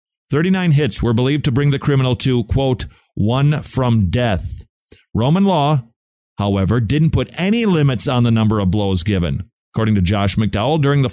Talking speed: 175 wpm